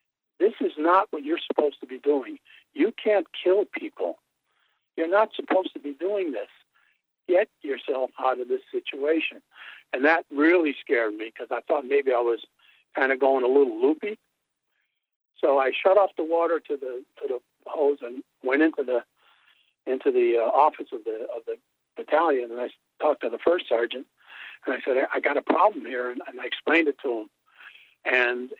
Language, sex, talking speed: English, male, 185 wpm